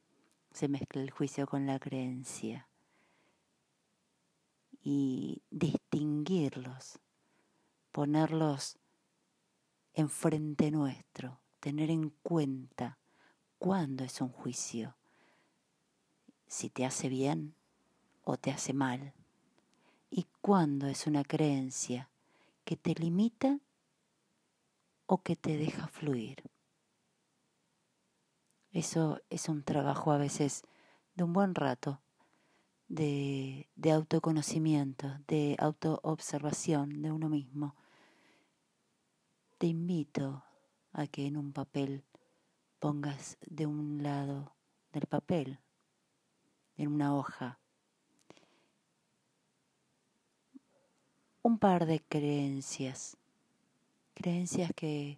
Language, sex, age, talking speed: Spanish, female, 40-59, 85 wpm